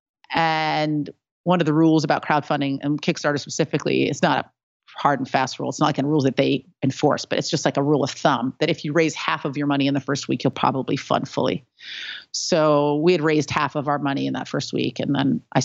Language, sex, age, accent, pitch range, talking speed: English, female, 40-59, American, 140-160 Hz, 245 wpm